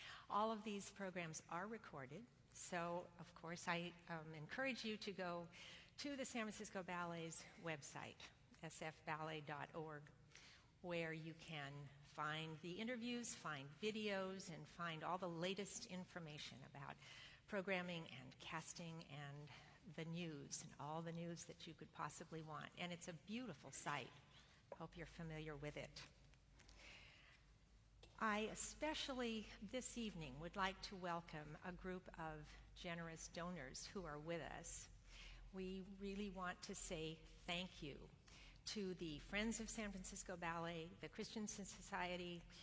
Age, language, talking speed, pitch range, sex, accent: 50-69, English, 135 wpm, 155-190 Hz, female, American